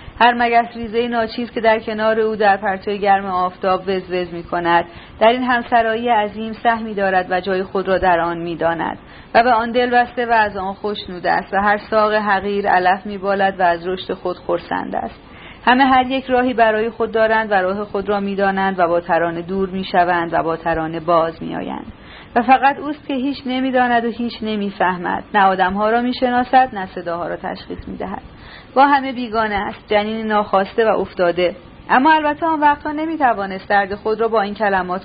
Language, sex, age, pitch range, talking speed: Persian, female, 40-59, 180-225 Hz, 195 wpm